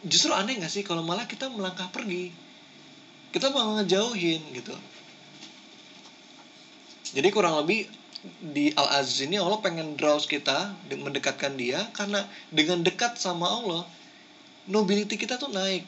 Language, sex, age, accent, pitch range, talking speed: Indonesian, male, 20-39, native, 150-230 Hz, 130 wpm